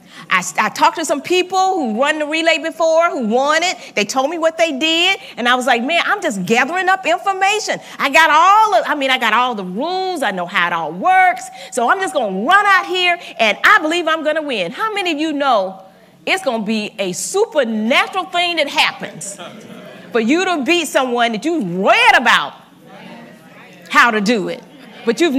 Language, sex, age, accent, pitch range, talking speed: English, female, 40-59, American, 235-350 Hz, 215 wpm